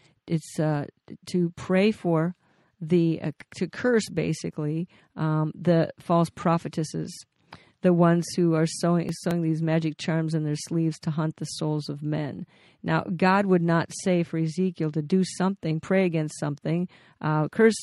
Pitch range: 160-185 Hz